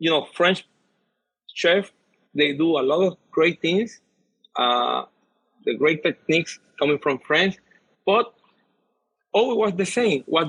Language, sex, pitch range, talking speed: English, male, 150-180 Hz, 135 wpm